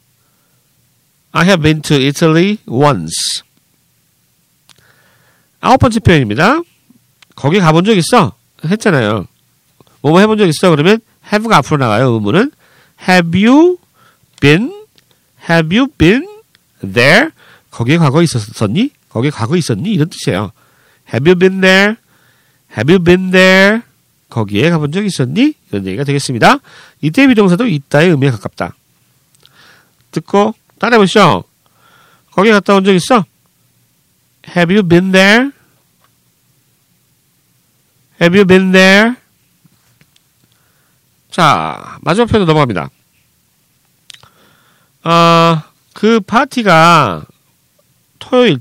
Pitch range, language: 140-210 Hz, Korean